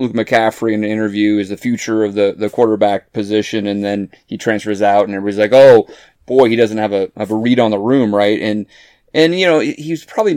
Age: 30-49